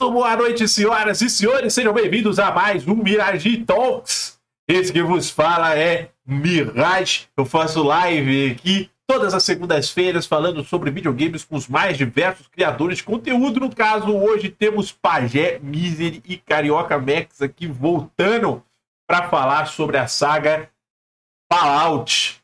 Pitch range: 160-215 Hz